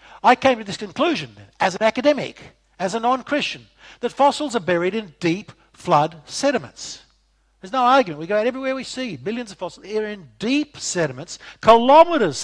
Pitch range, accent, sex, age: 155-225 Hz, Australian, male, 60-79